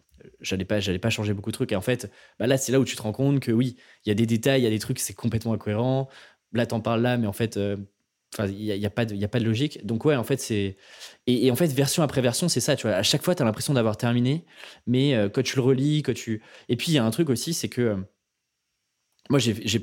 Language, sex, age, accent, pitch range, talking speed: French, male, 20-39, French, 105-130 Hz, 295 wpm